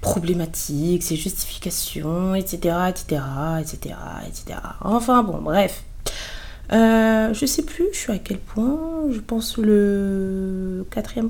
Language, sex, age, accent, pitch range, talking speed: French, female, 20-39, French, 170-225 Hz, 125 wpm